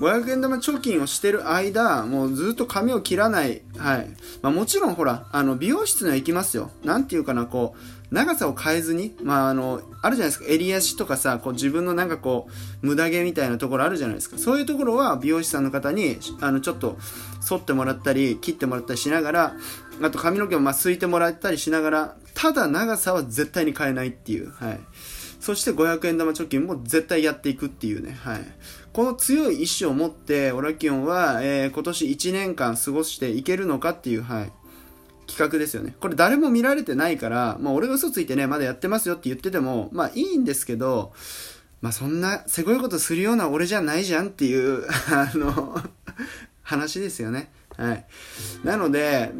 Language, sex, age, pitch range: Japanese, male, 20-39, 135-200 Hz